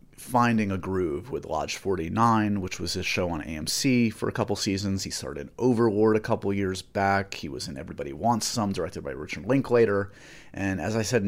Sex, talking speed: male, 195 wpm